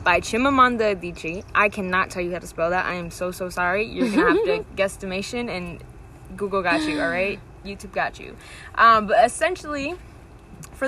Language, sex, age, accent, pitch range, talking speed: English, female, 10-29, American, 175-205 Hz, 195 wpm